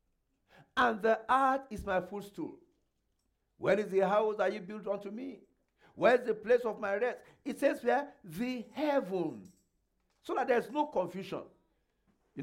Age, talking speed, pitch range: 50-69, 165 wpm, 180-250 Hz